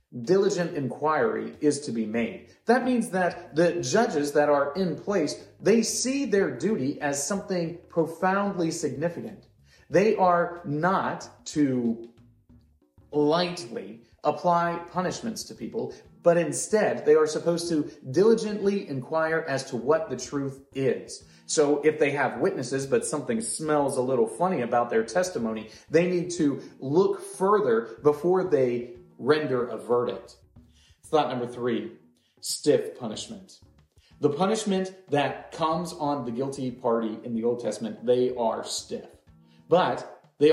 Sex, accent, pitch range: male, American, 120-175 Hz